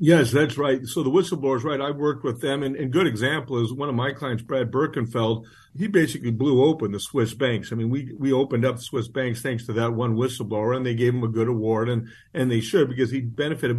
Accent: American